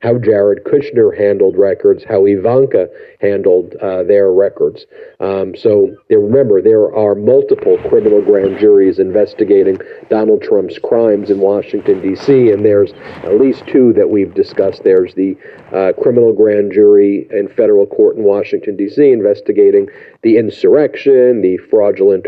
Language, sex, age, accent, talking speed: English, male, 50-69, American, 140 wpm